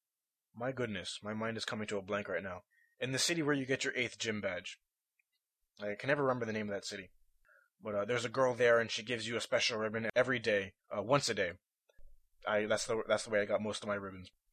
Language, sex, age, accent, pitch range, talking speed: English, male, 20-39, American, 100-115 Hz, 250 wpm